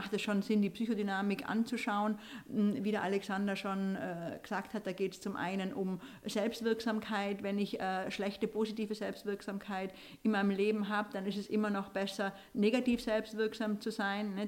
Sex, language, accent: female, German, German